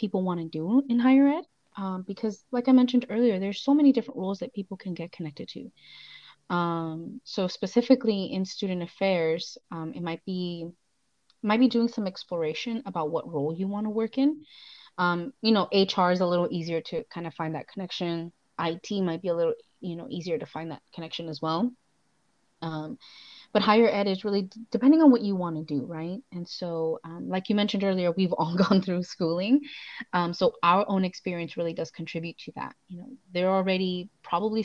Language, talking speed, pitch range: English, 205 wpm, 165-210 Hz